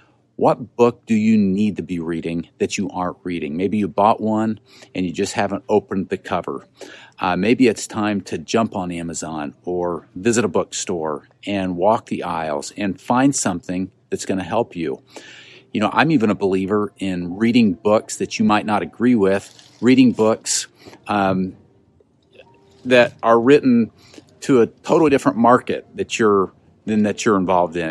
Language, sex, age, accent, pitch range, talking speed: English, male, 50-69, American, 95-120 Hz, 170 wpm